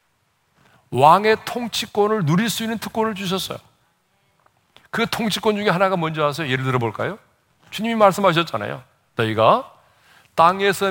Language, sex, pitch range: Korean, male, 160-225 Hz